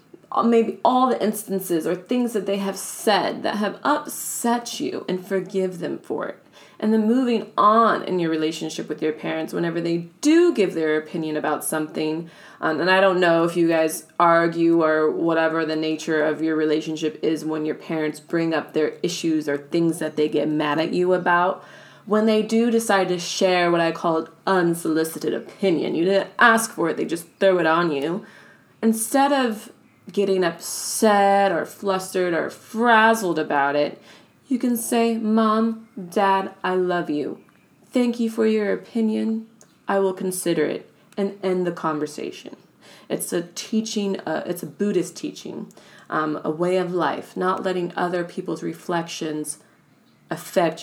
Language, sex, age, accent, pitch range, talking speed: English, female, 20-39, American, 160-210 Hz, 170 wpm